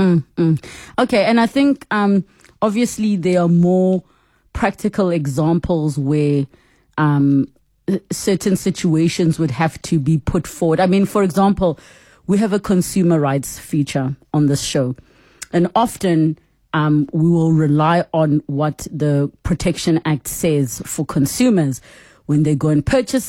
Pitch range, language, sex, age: 155-210 Hz, English, female, 30-49